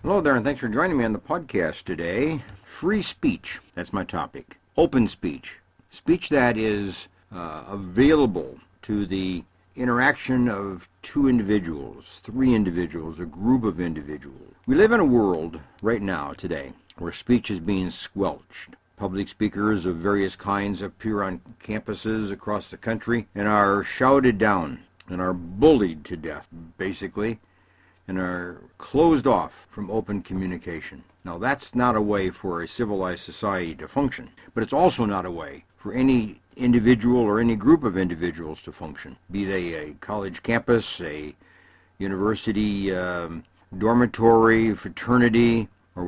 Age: 60-79